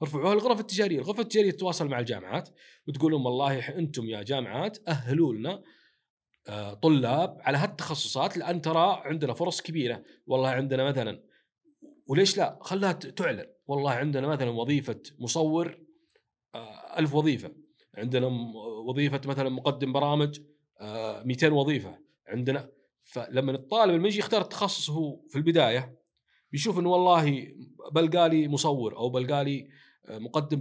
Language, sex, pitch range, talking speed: Arabic, male, 125-170 Hz, 120 wpm